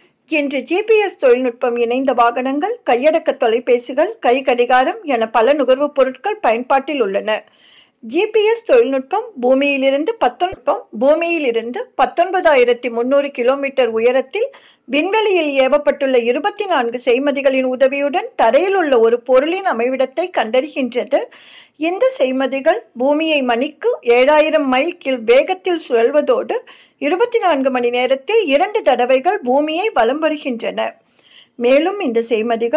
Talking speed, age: 90 wpm, 50-69